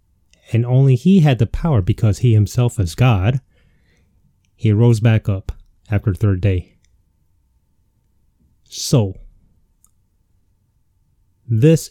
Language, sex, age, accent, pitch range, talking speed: English, male, 30-49, American, 95-125 Hz, 105 wpm